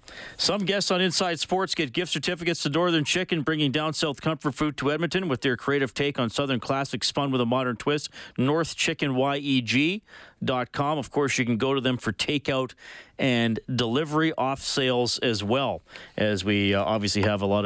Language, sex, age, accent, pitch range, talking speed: English, male, 40-59, American, 110-145 Hz, 175 wpm